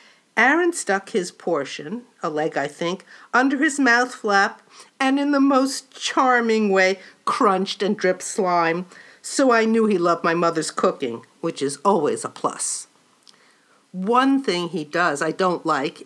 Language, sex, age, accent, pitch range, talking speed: English, female, 50-69, American, 185-265 Hz, 155 wpm